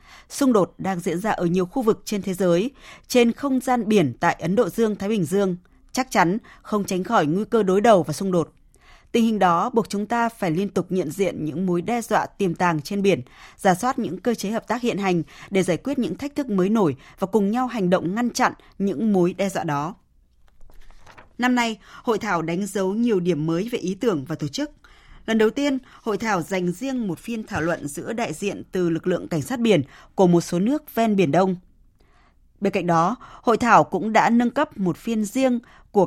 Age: 20-39